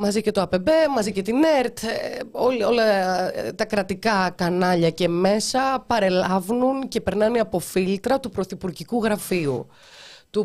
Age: 20-39